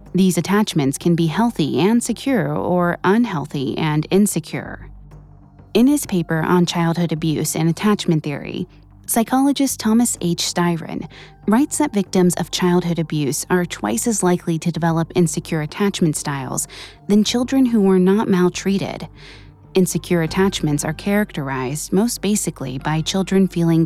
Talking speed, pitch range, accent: 135 wpm, 160-200 Hz, American